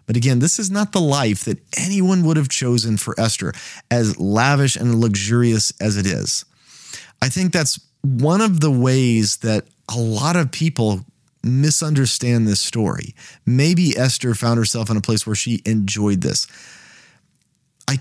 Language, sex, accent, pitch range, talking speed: English, male, American, 115-145 Hz, 160 wpm